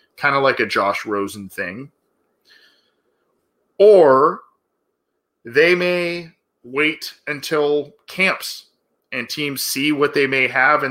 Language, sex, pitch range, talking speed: English, male, 125-165 Hz, 115 wpm